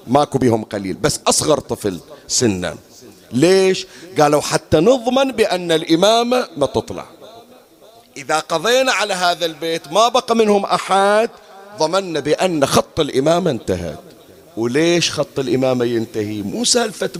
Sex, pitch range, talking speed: male, 125-190 Hz, 120 wpm